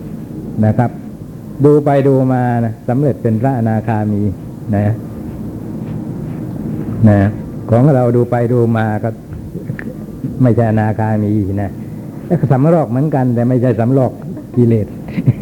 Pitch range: 110-135 Hz